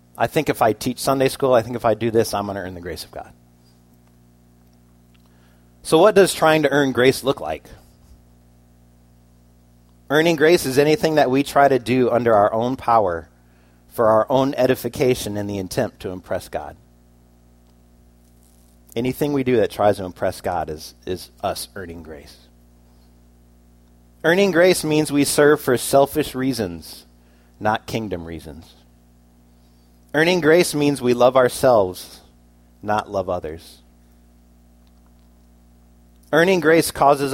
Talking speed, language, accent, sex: 145 wpm, English, American, male